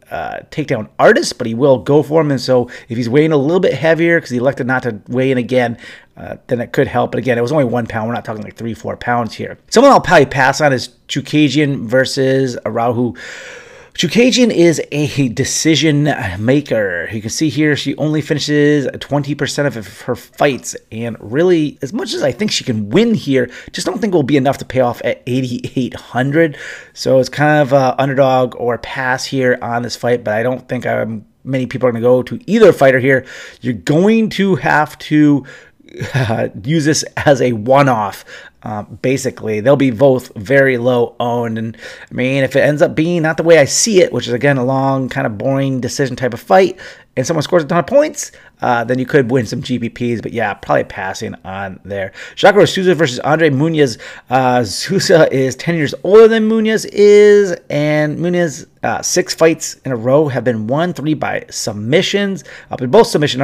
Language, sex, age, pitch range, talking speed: English, male, 30-49, 125-150 Hz, 205 wpm